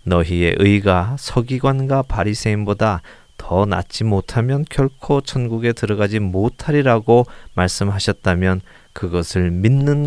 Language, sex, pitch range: Korean, male, 90-120 Hz